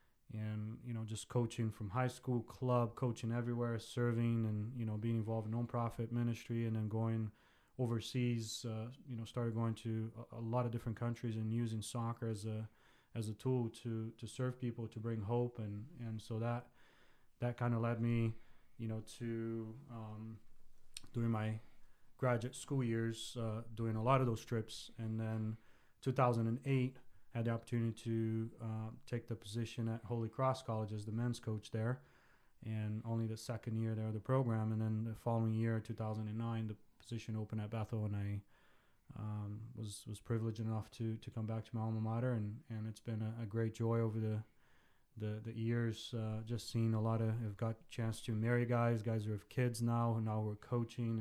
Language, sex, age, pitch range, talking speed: English, male, 20-39, 110-120 Hz, 190 wpm